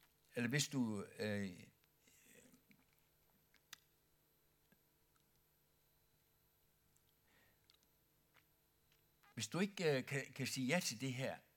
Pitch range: 100-145 Hz